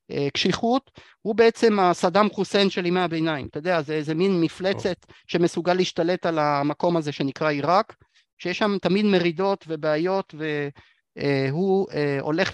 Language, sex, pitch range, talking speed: Hebrew, male, 155-210 Hz, 135 wpm